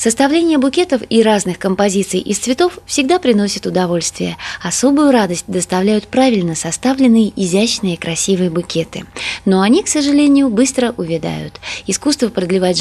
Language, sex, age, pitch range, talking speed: Russian, female, 20-39, 180-260 Hz, 120 wpm